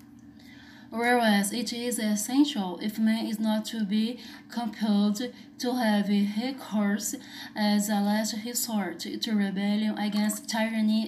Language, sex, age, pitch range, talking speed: Portuguese, female, 20-39, 210-245 Hz, 125 wpm